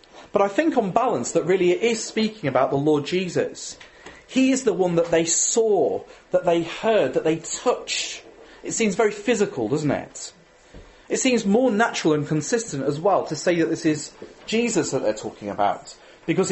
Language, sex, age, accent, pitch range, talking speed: English, male, 40-59, British, 160-230 Hz, 190 wpm